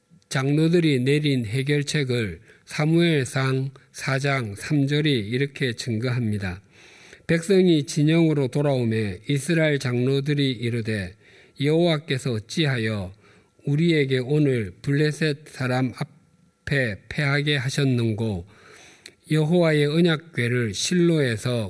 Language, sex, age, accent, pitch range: Korean, male, 50-69, native, 120-155 Hz